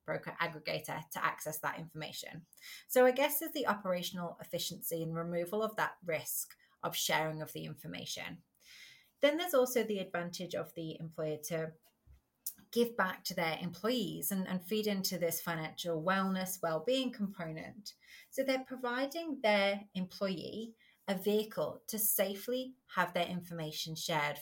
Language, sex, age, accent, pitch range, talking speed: English, female, 30-49, British, 165-215 Hz, 145 wpm